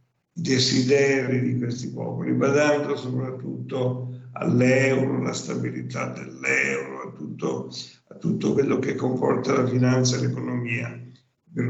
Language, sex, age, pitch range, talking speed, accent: Italian, male, 50-69, 120-135 Hz, 120 wpm, native